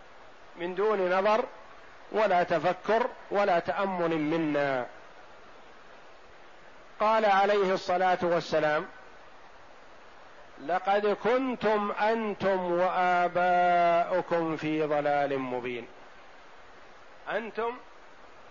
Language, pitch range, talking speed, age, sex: Arabic, 170-210 Hz, 65 wpm, 50-69, male